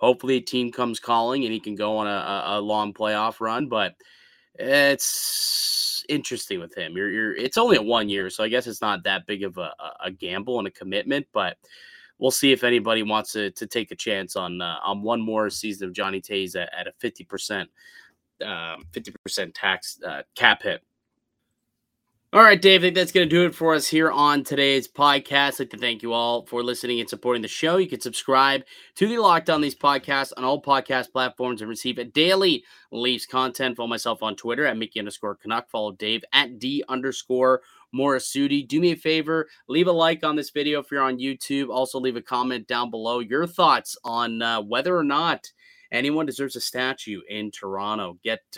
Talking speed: 205 wpm